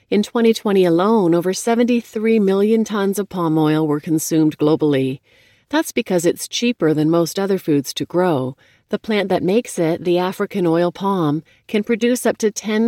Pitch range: 155-205 Hz